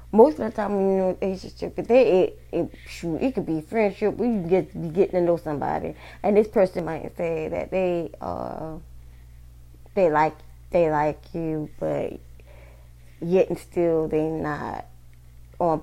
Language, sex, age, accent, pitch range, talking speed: English, female, 20-39, American, 150-200 Hz, 160 wpm